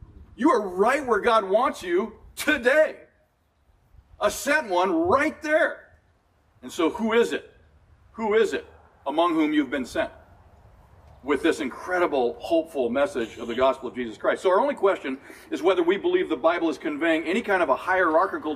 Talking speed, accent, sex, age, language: 175 wpm, American, male, 40-59, English